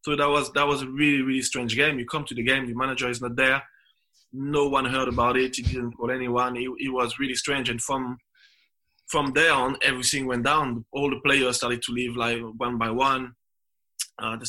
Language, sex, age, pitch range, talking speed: English, male, 20-39, 120-135 Hz, 220 wpm